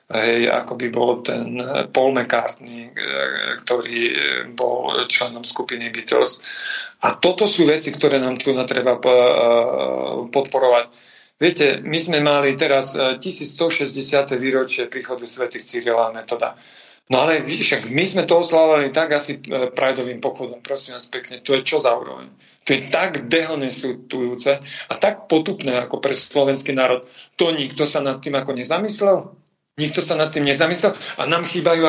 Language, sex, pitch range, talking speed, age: Slovak, male, 130-165 Hz, 150 wpm, 40-59